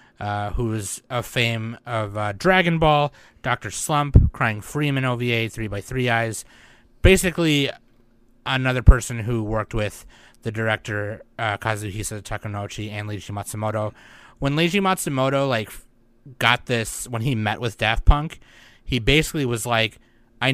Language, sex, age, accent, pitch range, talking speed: English, male, 30-49, American, 110-130 Hz, 145 wpm